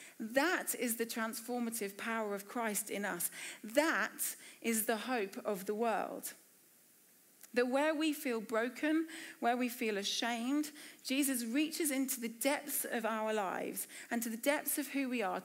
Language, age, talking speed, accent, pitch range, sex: English, 30-49, 160 wpm, British, 225-280 Hz, female